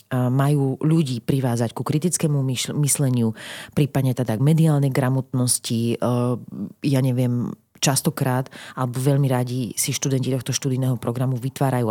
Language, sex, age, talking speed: Slovak, female, 30-49, 115 wpm